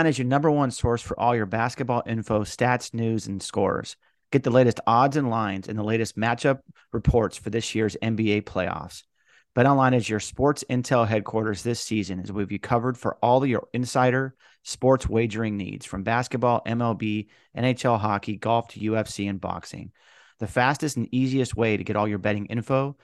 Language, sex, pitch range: English, male, 105-125 Hz